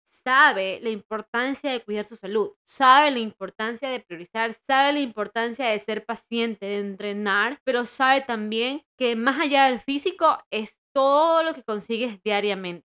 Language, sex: Spanish, female